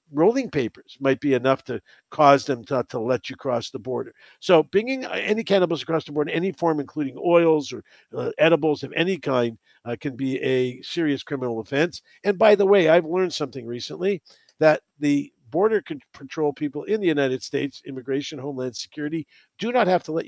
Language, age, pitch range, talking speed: English, 50-69, 140-185 Hz, 190 wpm